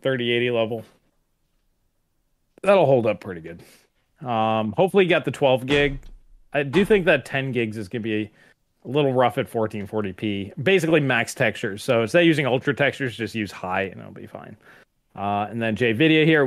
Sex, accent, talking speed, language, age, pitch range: male, American, 185 wpm, English, 20-39, 105-145 Hz